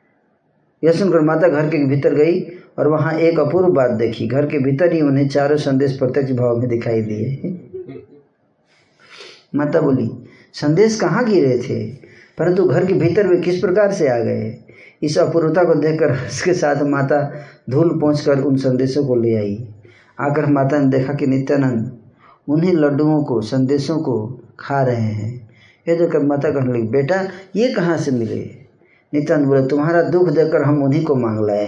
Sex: male